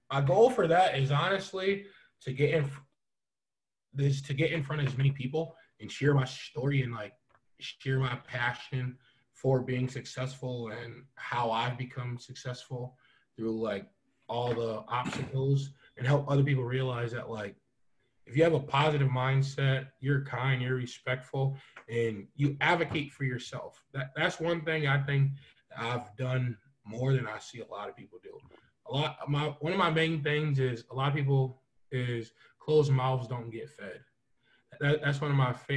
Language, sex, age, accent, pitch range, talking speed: English, male, 20-39, American, 125-145 Hz, 175 wpm